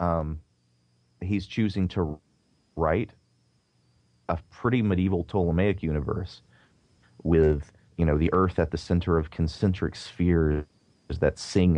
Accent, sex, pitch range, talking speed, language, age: American, male, 75-90 Hz, 115 wpm, English, 30-49